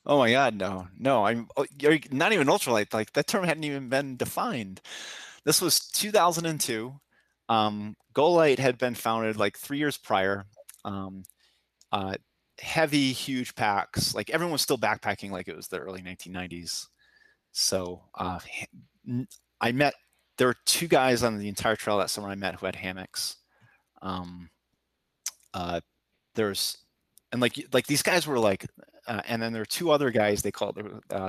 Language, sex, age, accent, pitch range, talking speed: English, male, 30-49, American, 95-125 Hz, 160 wpm